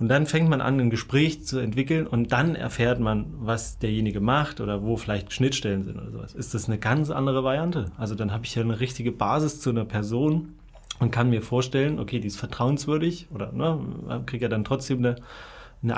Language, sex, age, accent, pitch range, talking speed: German, male, 30-49, German, 110-145 Hz, 205 wpm